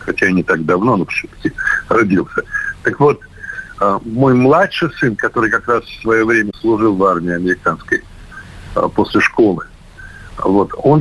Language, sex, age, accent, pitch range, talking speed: Russian, male, 60-79, native, 100-135 Hz, 140 wpm